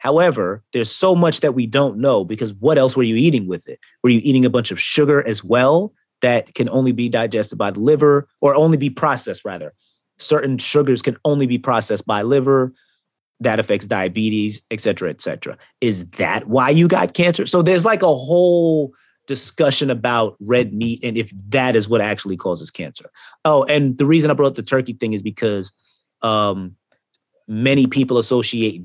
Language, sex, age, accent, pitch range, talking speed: English, male, 30-49, American, 110-145 Hz, 190 wpm